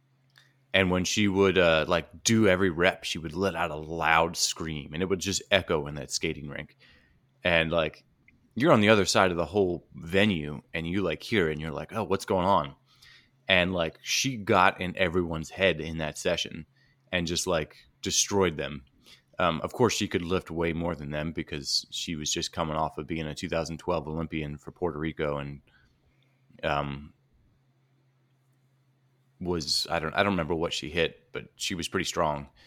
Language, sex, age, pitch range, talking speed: English, male, 20-39, 80-115 Hz, 185 wpm